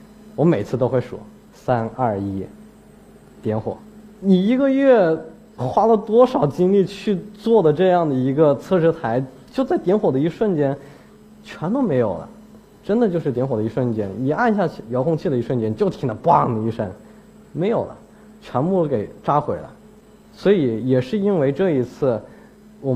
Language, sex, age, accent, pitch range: Chinese, male, 20-39, native, 115-165 Hz